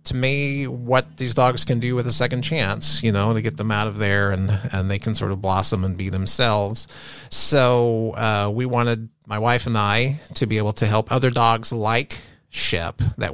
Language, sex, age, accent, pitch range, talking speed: English, male, 30-49, American, 100-125 Hz, 210 wpm